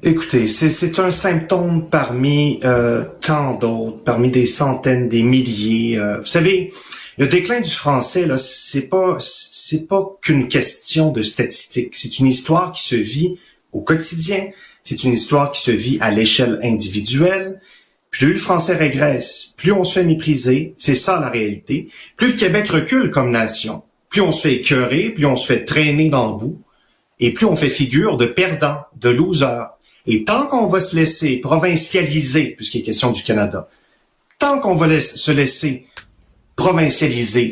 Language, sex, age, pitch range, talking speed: French, male, 30-49, 120-165 Hz, 170 wpm